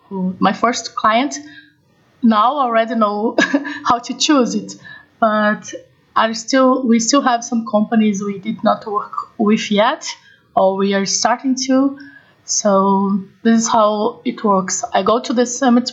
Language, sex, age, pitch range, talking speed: English, female, 20-39, 200-235 Hz, 150 wpm